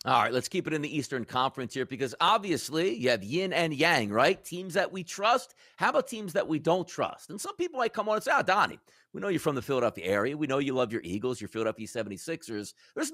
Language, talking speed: English, 250 wpm